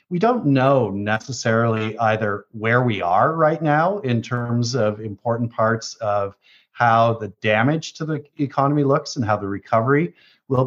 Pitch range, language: 110-140 Hz, English